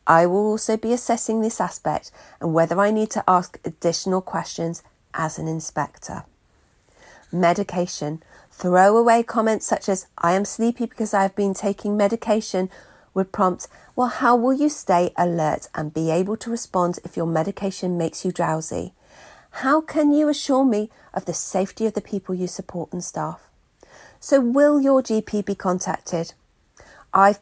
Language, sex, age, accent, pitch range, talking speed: English, female, 40-59, British, 175-220 Hz, 160 wpm